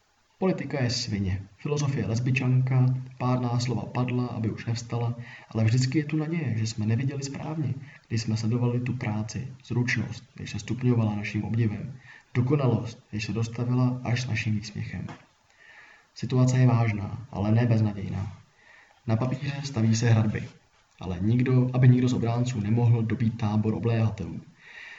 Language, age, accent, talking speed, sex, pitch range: Czech, 20-39, native, 145 wpm, male, 105-125 Hz